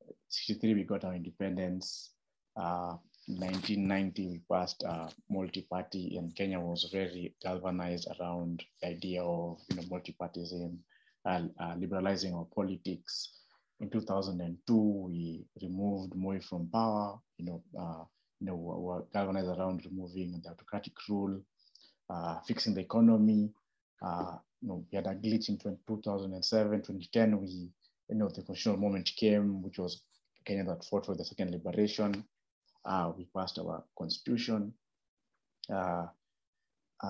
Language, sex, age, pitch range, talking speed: English, male, 30-49, 90-105 Hz, 140 wpm